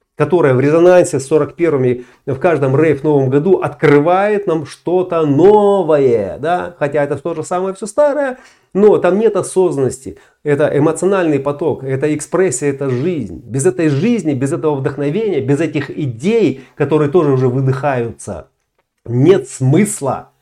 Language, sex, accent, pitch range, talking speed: Russian, male, native, 130-160 Hz, 145 wpm